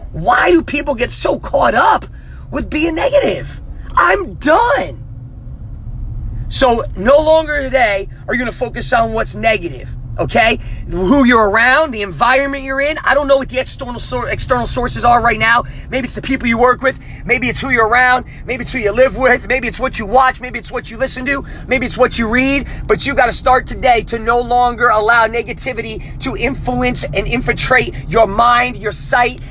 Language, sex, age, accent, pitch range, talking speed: English, male, 30-49, American, 210-270 Hz, 195 wpm